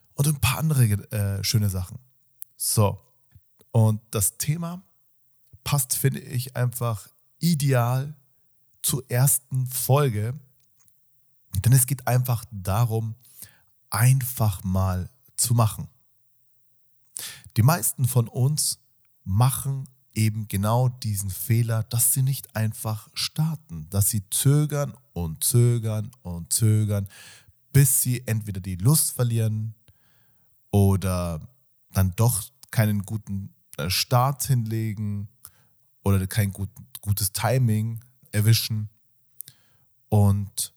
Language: German